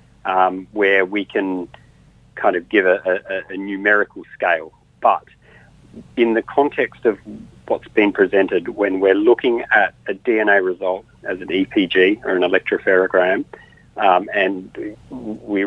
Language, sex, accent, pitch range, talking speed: English, male, Australian, 95-120 Hz, 140 wpm